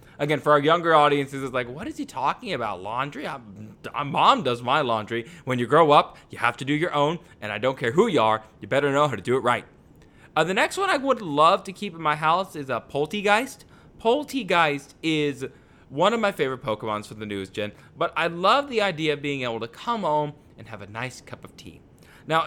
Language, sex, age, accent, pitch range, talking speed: English, male, 20-39, American, 125-165 Hz, 235 wpm